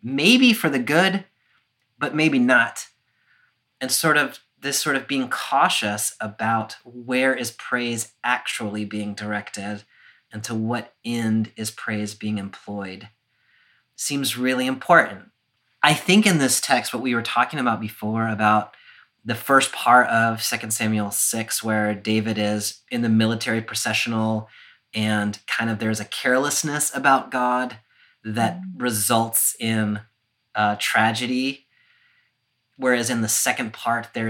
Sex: male